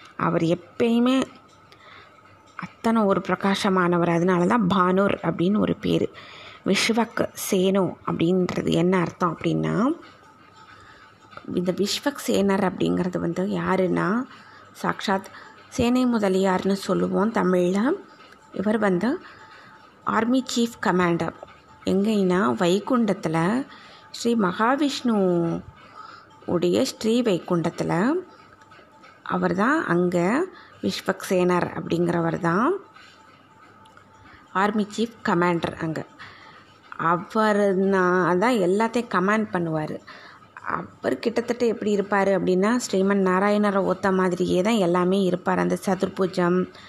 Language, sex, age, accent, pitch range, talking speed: Tamil, female, 20-39, native, 180-215 Hz, 85 wpm